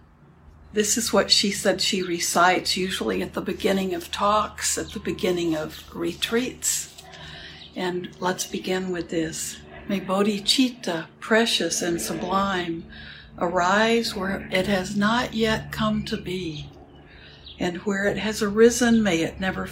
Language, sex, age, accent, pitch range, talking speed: English, female, 60-79, American, 165-210 Hz, 135 wpm